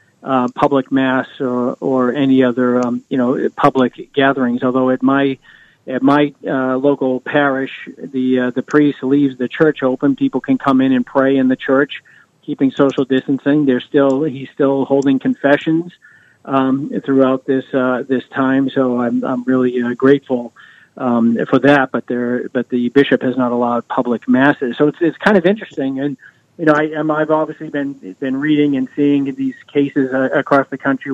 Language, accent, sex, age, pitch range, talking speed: English, American, male, 40-59, 130-150 Hz, 180 wpm